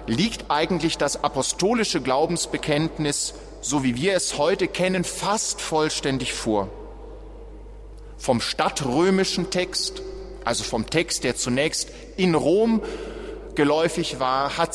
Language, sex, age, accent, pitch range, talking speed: German, male, 30-49, German, 125-165 Hz, 110 wpm